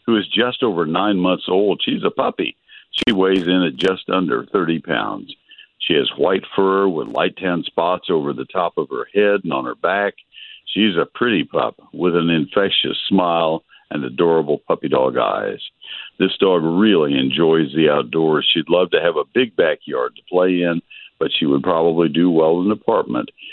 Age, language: 60-79, English